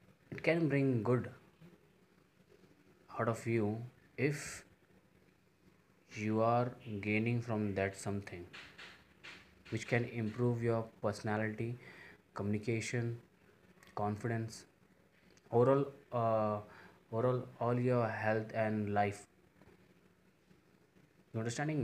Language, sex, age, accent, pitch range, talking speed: Hindi, male, 20-39, native, 105-125 Hz, 80 wpm